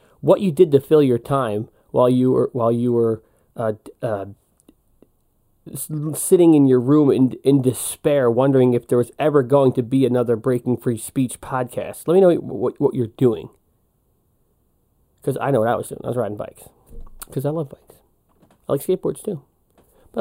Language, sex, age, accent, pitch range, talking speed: English, male, 30-49, American, 120-145 Hz, 185 wpm